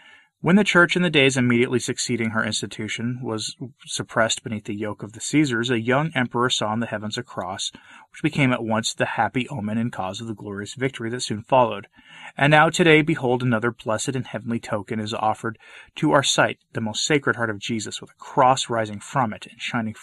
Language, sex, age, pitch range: English, male, 30-49, 110-140 Hz